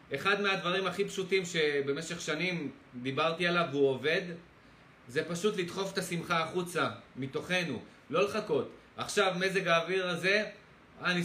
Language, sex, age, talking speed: Hebrew, male, 30-49, 130 wpm